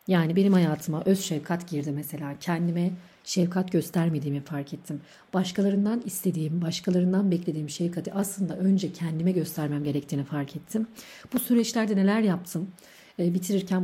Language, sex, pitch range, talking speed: Turkish, female, 155-195 Hz, 130 wpm